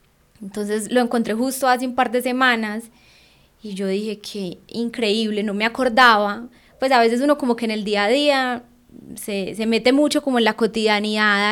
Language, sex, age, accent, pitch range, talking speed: Spanish, female, 20-39, Colombian, 190-230 Hz, 190 wpm